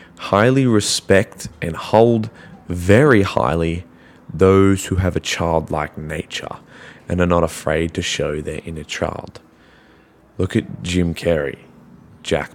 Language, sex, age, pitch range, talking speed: English, male, 20-39, 85-110 Hz, 125 wpm